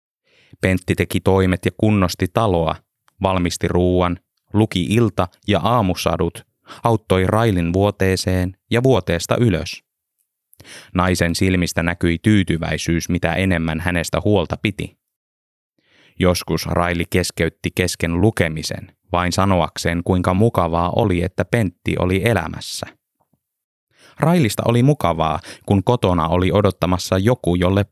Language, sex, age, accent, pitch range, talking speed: Finnish, male, 20-39, native, 85-110 Hz, 105 wpm